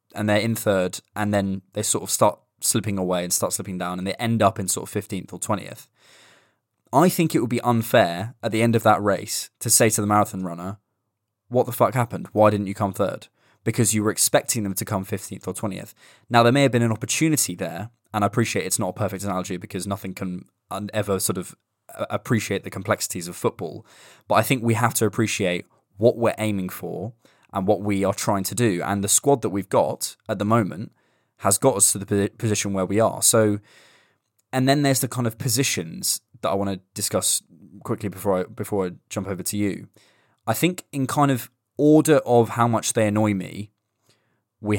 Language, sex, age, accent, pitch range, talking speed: English, male, 20-39, British, 100-115 Hz, 215 wpm